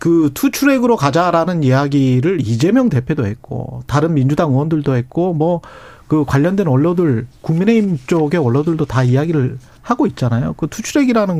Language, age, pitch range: Korean, 40-59, 140-220 Hz